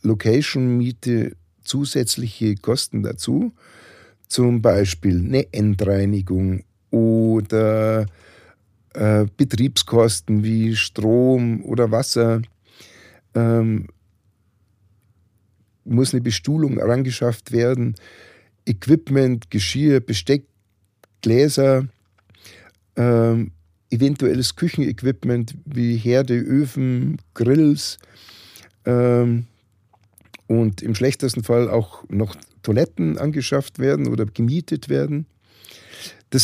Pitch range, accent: 100-130 Hz, German